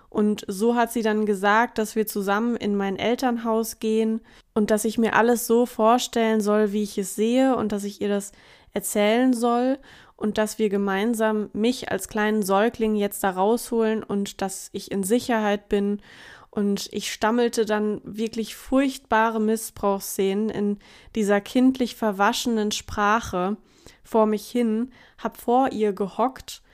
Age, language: 20-39, German